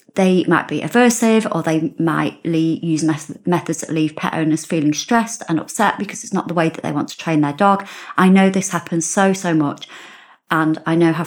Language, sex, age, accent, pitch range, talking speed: English, female, 30-49, British, 160-195 Hz, 215 wpm